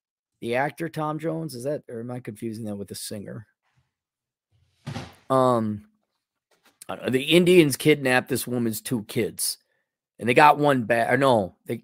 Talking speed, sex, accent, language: 150 wpm, male, American, English